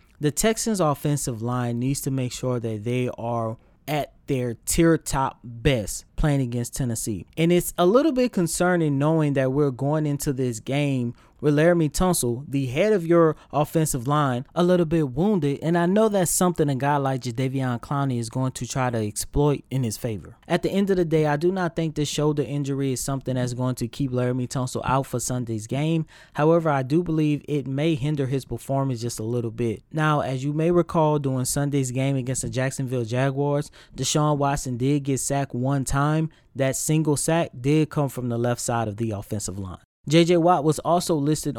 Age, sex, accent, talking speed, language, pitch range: 20-39, male, American, 200 wpm, English, 125-155 Hz